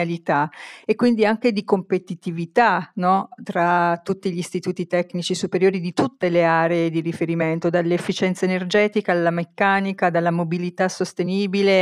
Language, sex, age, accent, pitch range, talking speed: Italian, female, 40-59, native, 175-205 Hz, 125 wpm